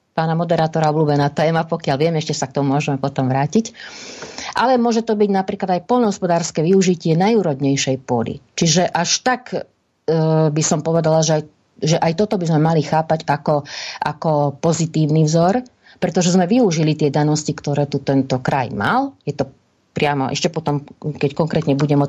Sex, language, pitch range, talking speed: female, Slovak, 140-170 Hz, 170 wpm